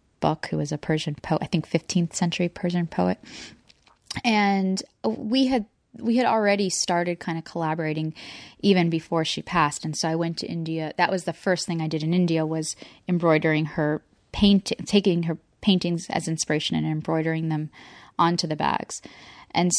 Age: 20-39